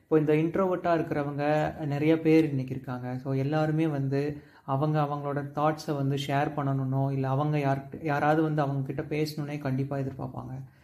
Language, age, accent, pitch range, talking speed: Tamil, 30-49, native, 135-155 Hz, 145 wpm